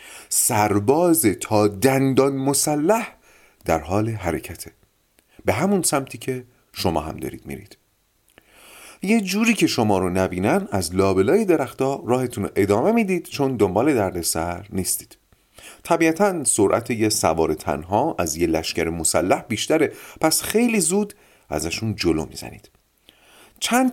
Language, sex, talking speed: Persian, male, 120 wpm